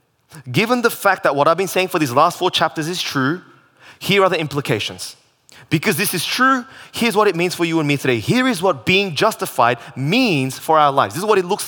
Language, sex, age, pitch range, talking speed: English, male, 20-39, 140-190 Hz, 235 wpm